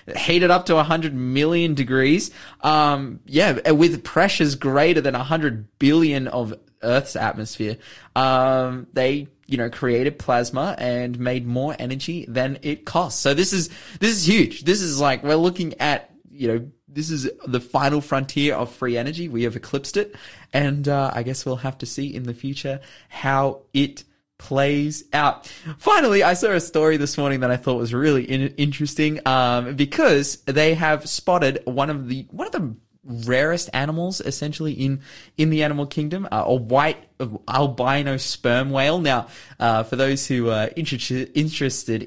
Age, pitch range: 20-39, 125-150 Hz